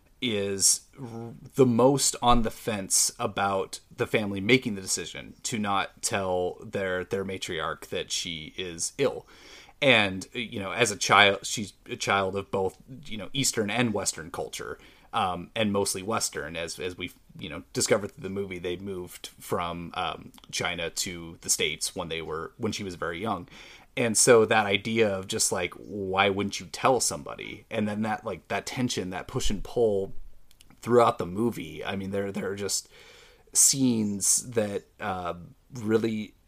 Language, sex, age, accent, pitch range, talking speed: English, male, 30-49, American, 95-115 Hz, 170 wpm